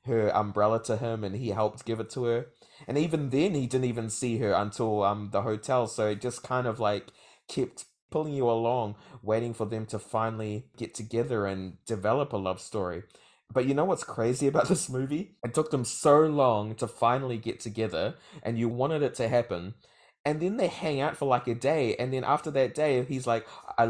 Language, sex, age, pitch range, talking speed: English, male, 20-39, 110-130 Hz, 215 wpm